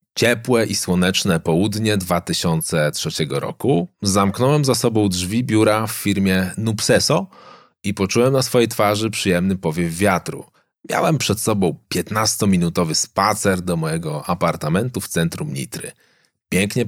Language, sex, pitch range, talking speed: Polish, male, 90-120 Hz, 120 wpm